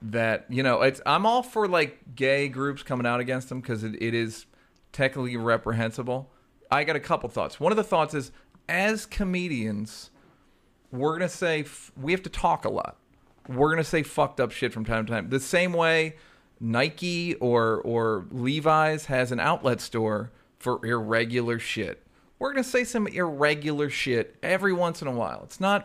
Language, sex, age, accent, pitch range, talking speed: English, male, 40-59, American, 120-190 Hz, 190 wpm